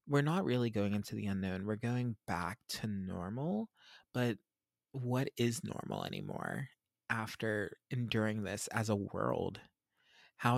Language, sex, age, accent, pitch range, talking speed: English, male, 20-39, American, 105-130 Hz, 135 wpm